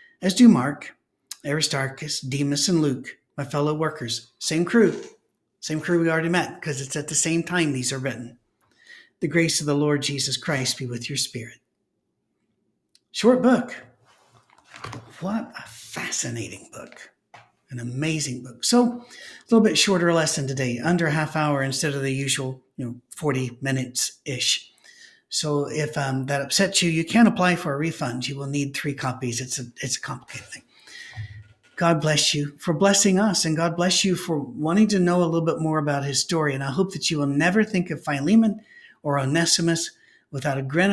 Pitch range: 135-180 Hz